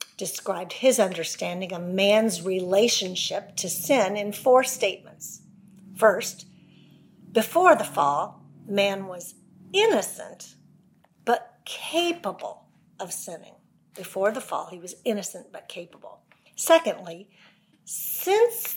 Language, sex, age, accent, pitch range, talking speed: English, female, 50-69, American, 180-225 Hz, 100 wpm